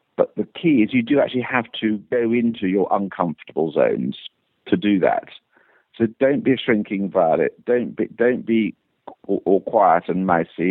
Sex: male